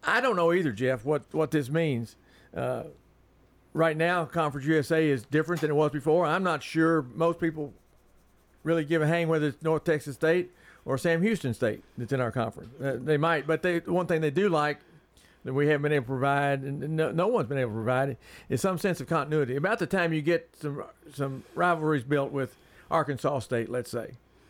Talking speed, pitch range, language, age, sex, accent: 215 wpm, 135-165 Hz, English, 50-69, male, American